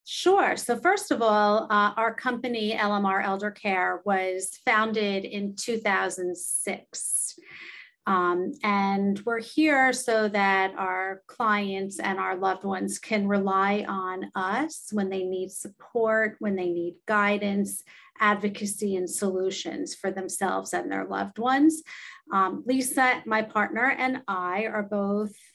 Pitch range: 190-225 Hz